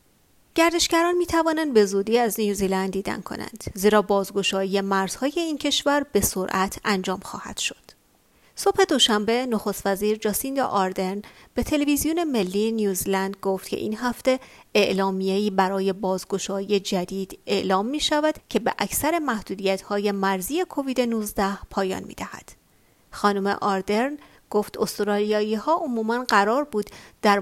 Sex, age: female, 30-49